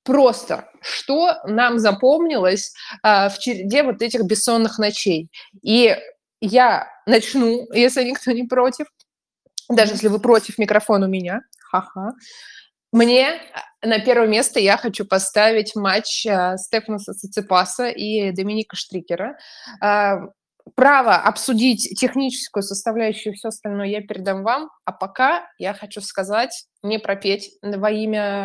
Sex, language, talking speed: female, Russian, 125 wpm